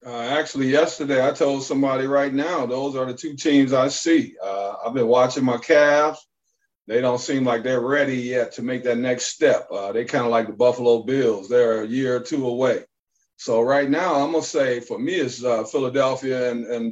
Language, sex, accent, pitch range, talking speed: English, male, American, 125-145 Hz, 215 wpm